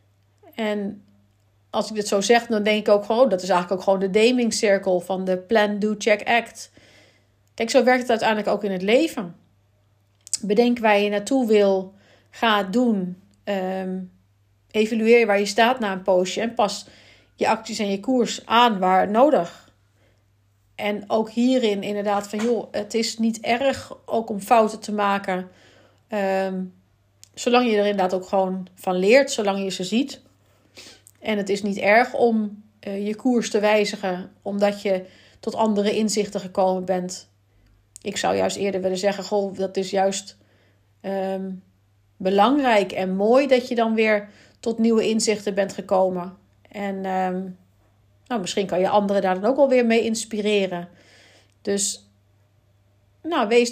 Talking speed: 155 wpm